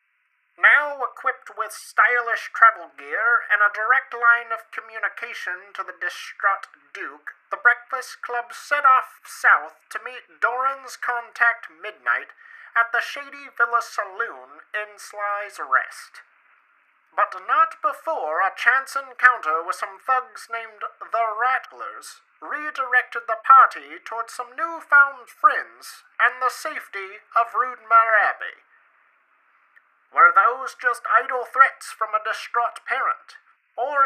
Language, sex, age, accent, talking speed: English, male, 30-49, American, 125 wpm